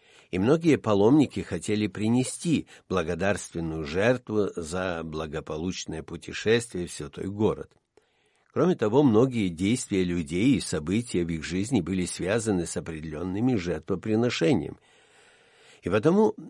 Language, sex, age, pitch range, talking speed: Russian, male, 60-79, 90-120 Hz, 110 wpm